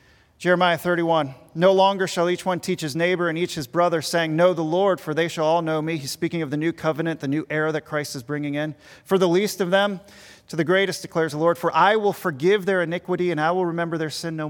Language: English